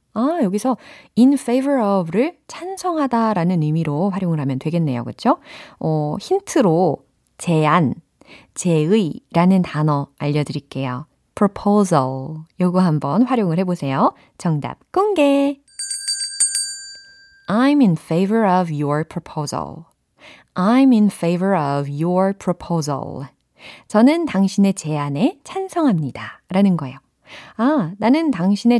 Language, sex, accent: Korean, female, native